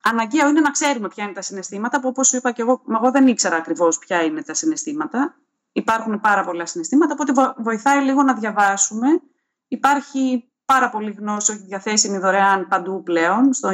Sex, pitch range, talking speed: female, 195-260 Hz, 175 wpm